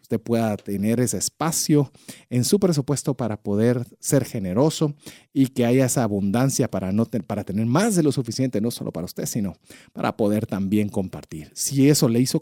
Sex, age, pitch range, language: male, 40-59, 110-155 Hz, Spanish